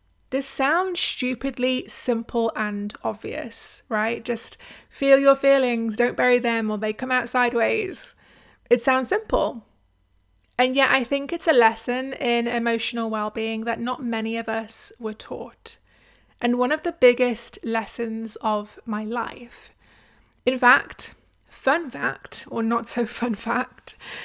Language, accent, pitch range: English, British, 225-265 Hz